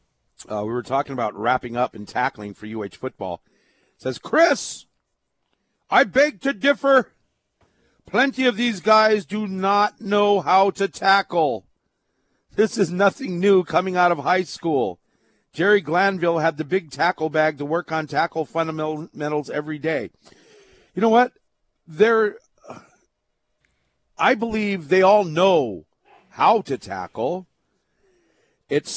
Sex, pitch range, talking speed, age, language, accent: male, 145-200 Hz, 135 wpm, 50-69, English, American